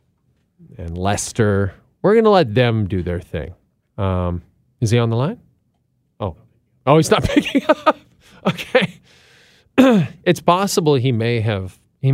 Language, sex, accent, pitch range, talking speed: English, male, American, 110-160 Hz, 145 wpm